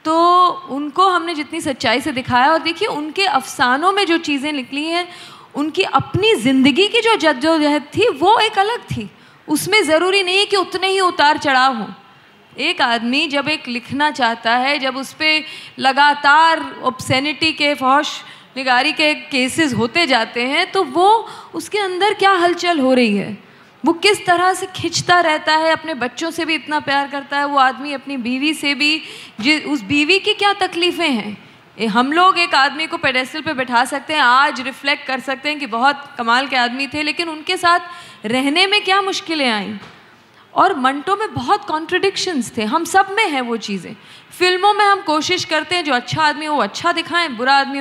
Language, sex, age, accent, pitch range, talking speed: Hindi, female, 20-39, native, 265-345 Hz, 190 wpm